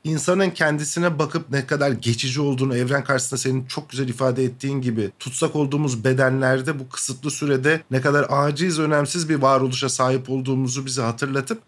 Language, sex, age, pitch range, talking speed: Turkish, male, 50-69, 135-170 Hz, 160 wpm